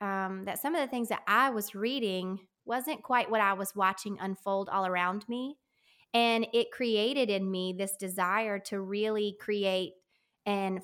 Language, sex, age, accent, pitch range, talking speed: English, female, 20-39, American, 195-225 Hz, 170 wpm